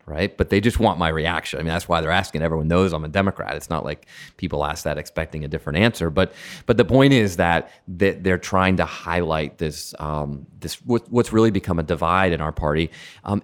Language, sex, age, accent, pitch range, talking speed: English, male, 30-49, American, 85-120 Hz, 225 wpm